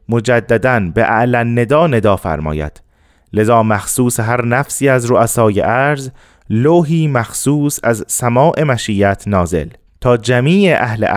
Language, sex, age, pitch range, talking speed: Persian, male, 30-49, 100-130 Hz, 120 wpm